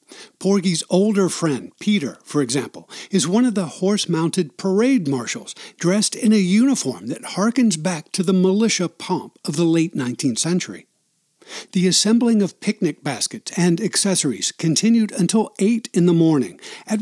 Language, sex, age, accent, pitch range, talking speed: English, male, 60-79, American, 170-220 Hz, 150 wpm